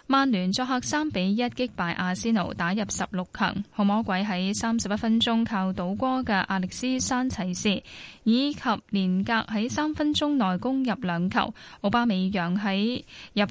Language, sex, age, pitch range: Chinese, female, 10-29, 190-245 Hz